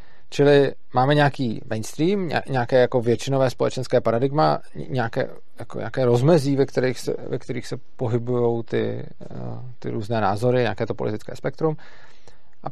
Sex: male